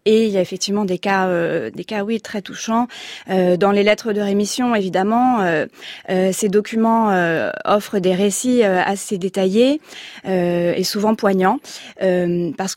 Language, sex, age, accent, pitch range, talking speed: French, female, 30-49, French, 190-230 Hz, 175 wpm